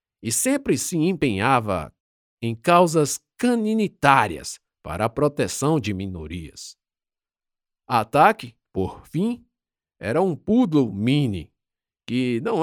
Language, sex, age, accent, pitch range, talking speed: Portuguese, male, 50-69, Brazilian, 100-150 Hz, 100 wpm